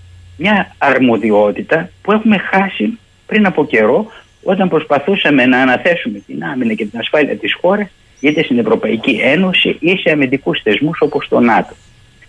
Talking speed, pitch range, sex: 145 wpm, 120-190 Hz, male